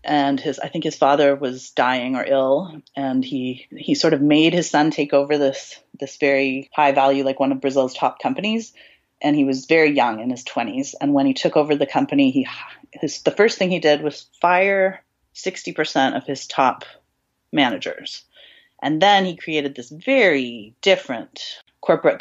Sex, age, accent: female, 30-49, American